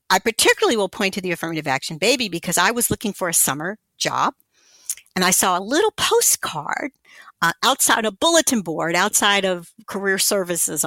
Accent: American